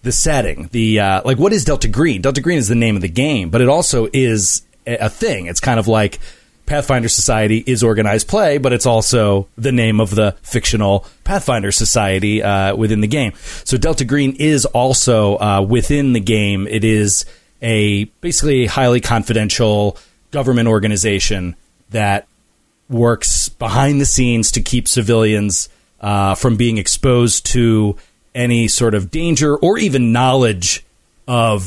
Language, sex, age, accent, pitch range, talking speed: English, male, 30-49, American, 105-130 Hz, 160 wpm